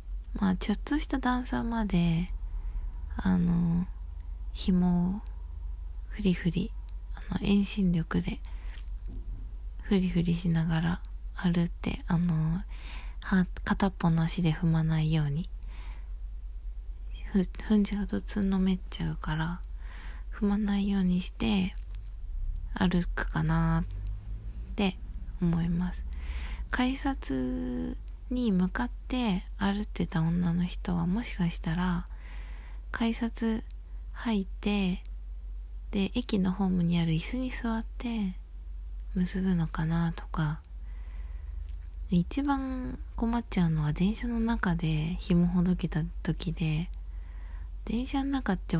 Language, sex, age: Japanese, female, 20-39